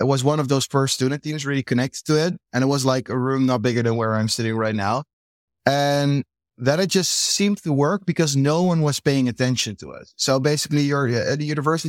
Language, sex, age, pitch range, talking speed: English, male, 20-39, 120-145 Hz, 235 wpm